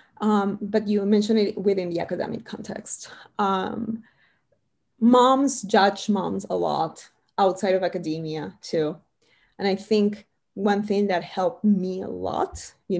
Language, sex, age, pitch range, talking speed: English, female, 20-39, 190-230 Hz, 140 wpm